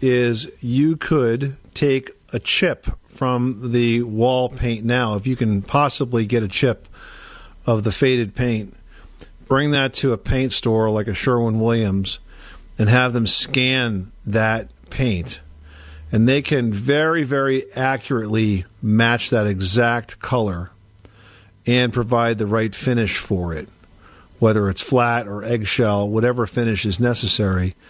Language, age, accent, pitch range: English, 50-69, American, 105-125 Hz